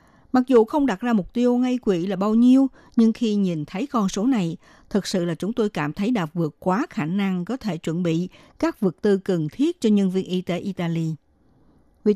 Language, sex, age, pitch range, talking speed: Vietnamese, female, 60-79, 180-245 Hz, 230 wpm